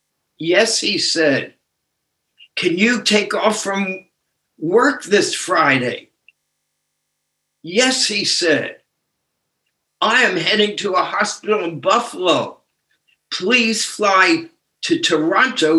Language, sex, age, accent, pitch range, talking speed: English, male, 60-79, American, 160-245 Hz, 100 wpm